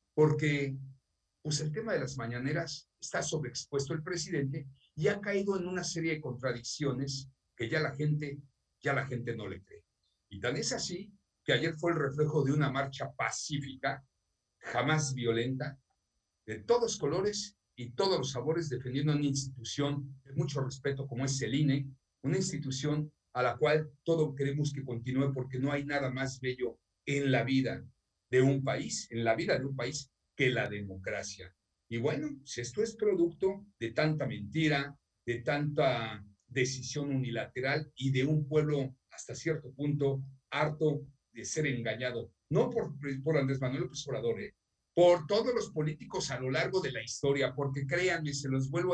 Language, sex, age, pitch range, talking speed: Spanish, male, 50-69, 130-155 Hz, 170 wpm